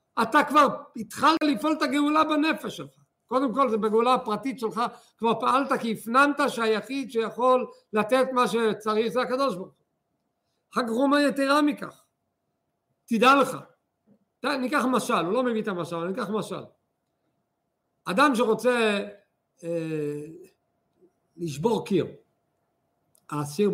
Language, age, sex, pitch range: Hebrew, 60-79, male, 170-245 Hz